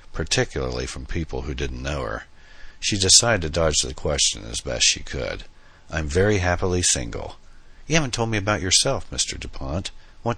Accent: American